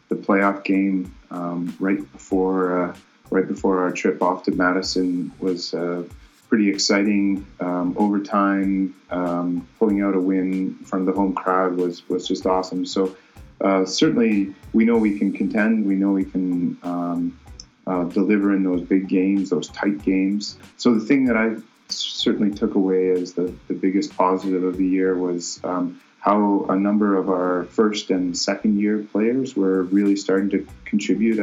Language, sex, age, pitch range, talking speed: English, male, 30-49, 90-100 Hz, 170 wpm